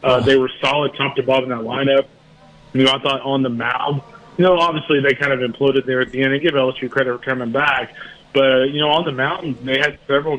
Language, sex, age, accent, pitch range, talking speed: English, male, 30-49, American, 130-160 Hz, 250 wpm